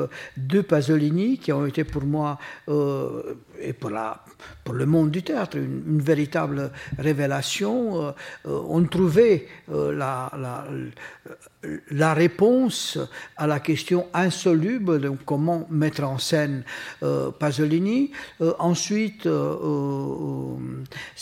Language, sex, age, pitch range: French, male, 60-79, 140-165 Hz